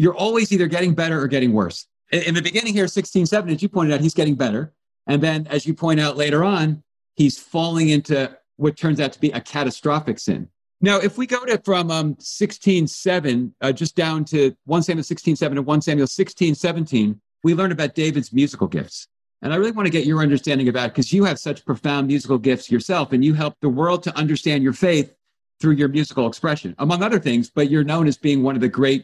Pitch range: 140-175 Hz